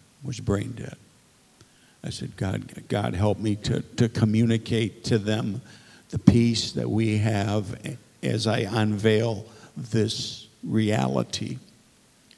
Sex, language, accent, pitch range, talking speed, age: male, English, American, 105-120 Hz, 115 wpm, 60-79